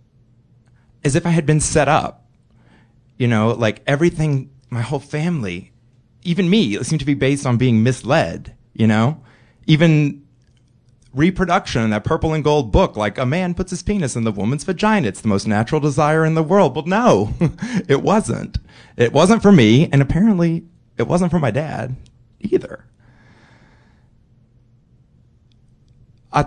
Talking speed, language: 155 wpm, English